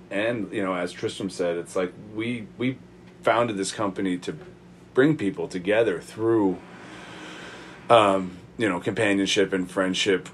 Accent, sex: American, male